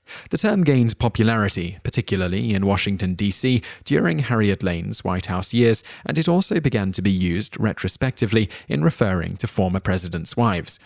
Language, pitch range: English, 95-115 Hz